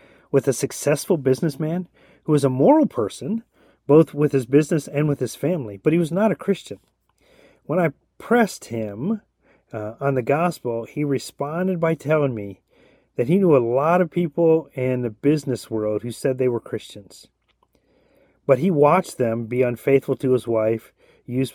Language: English